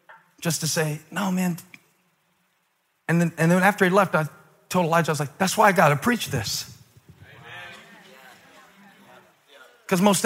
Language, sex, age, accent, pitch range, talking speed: English, male, 40-59, American, 150-205 Hz, 160 wpm